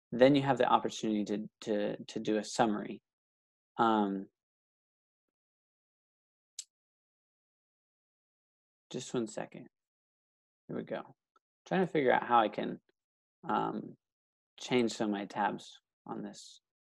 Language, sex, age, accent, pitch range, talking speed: English, male, 20-39, American, 105-130 Hz, 120 wpm